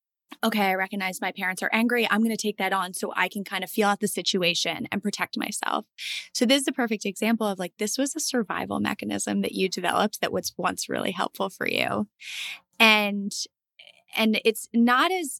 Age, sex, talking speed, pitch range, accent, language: 10-29, female, 205 wpm, 190-230 Hz, American, English